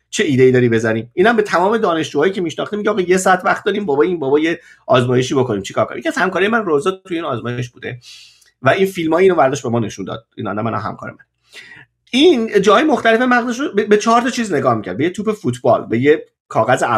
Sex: male